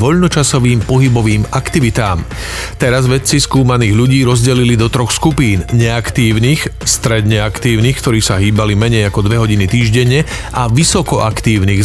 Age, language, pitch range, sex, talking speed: 40-59, Slovak, 115-145 Hz, male, 115 wpm